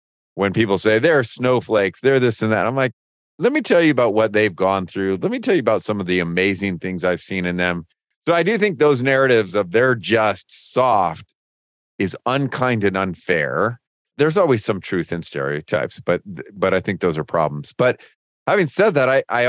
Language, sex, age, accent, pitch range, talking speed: English, male, 40-59, American, 90-125 Hz, 205 wpm